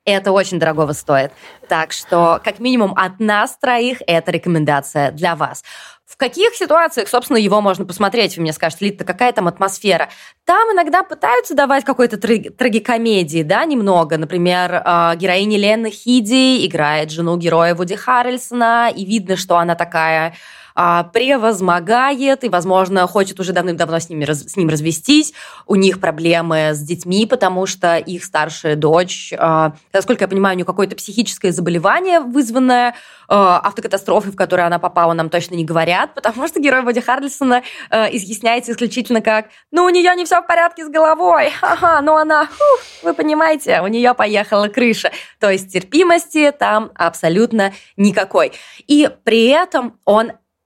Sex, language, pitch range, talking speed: female, Russian, 175-250 Hz, 155 wpm